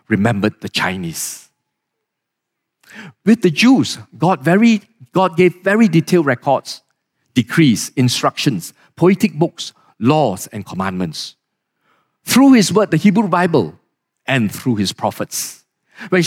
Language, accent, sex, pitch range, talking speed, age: English, Malaysian, male, 140-205 Hz, 115 wpm, 50-69